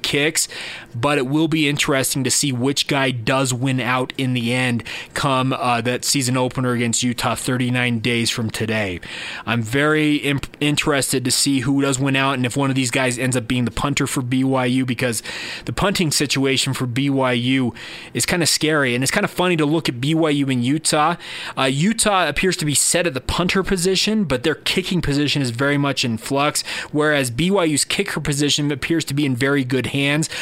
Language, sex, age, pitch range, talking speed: English, male, 20-39, 130-155 Hz, 195 wpm